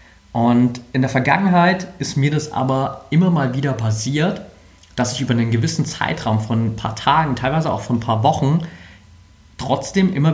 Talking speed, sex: 175 wpm, male